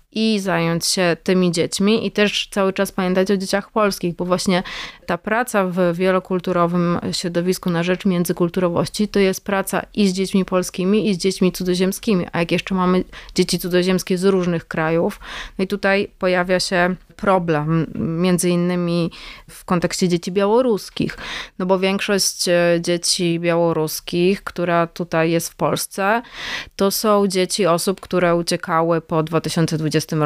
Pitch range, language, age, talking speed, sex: 170-195 Hz, Polish, 30-49, 145 wpm, female